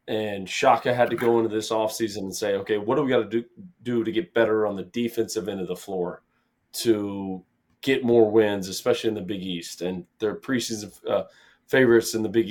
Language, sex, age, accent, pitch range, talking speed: English, male, 20-39, American, 110-130 Hz, 215 wpm